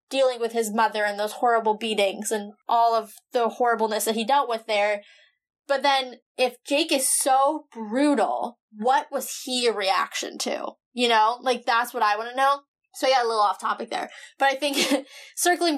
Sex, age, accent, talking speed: female, 10-29, American, 195 wpm